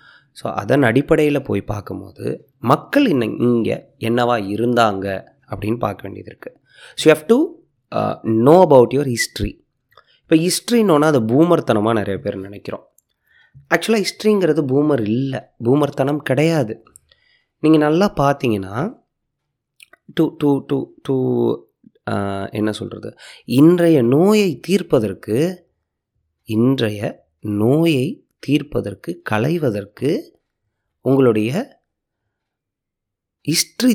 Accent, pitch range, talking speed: native, 110-160 Hz, 95 wpm